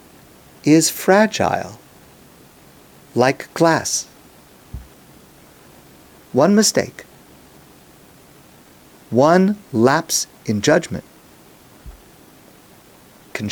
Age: 50-69